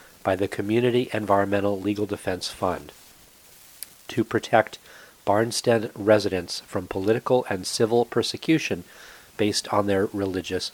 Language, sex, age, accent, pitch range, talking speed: English, male, 40-59, American, 100-115 Hz, 110 wpm